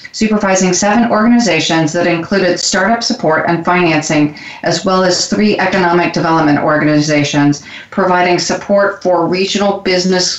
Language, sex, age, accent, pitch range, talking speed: English, female, 40-59, American, 170-200 Hz, 120 wpm